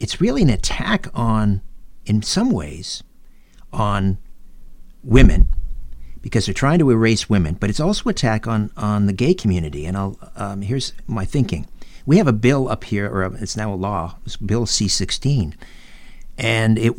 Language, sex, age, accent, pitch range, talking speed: English, male, 50-69, American, 95-130 Hz, 165 wpm